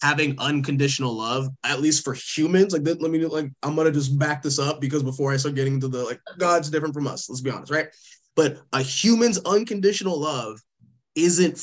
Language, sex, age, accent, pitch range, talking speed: English, male, 20-39, American, 120-145 Hz, 205 wpm